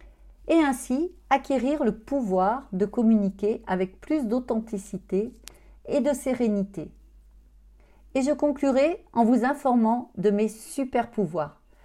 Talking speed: 110 wpm